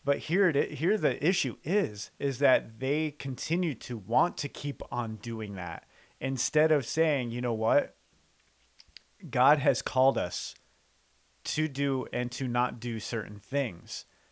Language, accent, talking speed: English, American, 155 wpm